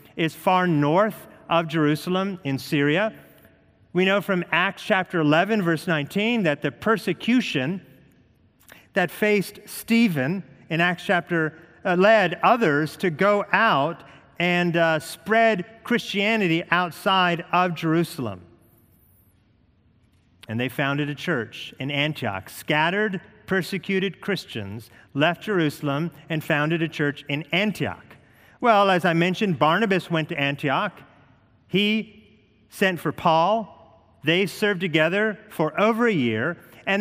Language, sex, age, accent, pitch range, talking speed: English, male, 40-59, American, 150-200 Hz, 120 wpm